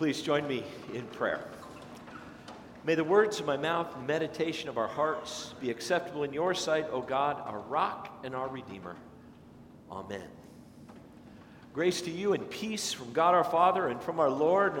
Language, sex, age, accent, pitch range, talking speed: English, male, 50-69, American, 140-185 Hz, 175 wpm